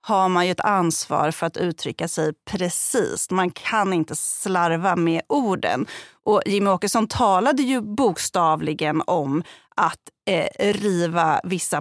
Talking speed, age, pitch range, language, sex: 130 wpm, 30-49, 170-230 Hz, Swedish, female